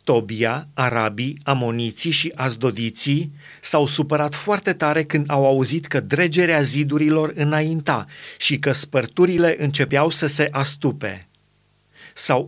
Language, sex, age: Romanian, male, 30-49